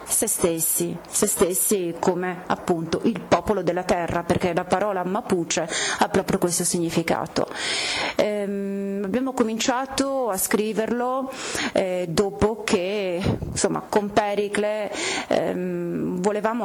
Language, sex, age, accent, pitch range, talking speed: Italian, female, 30-49, native, 180-215 Hz, 110 wpm